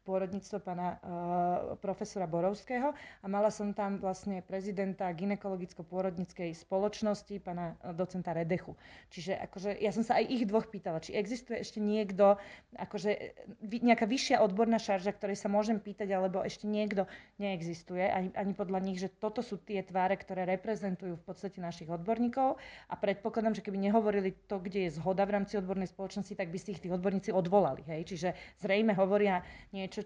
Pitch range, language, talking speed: 185-215 Hz, Slovak, 165 wpm